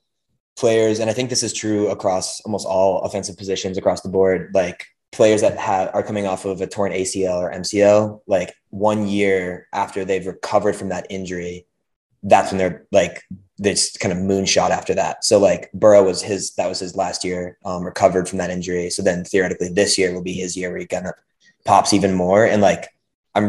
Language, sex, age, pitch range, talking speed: English, male, 20-39, 90-100 Hz, 205 wpm